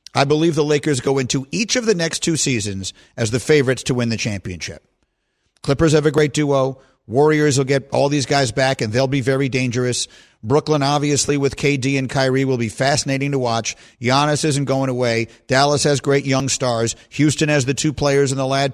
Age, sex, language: 50-69, male, English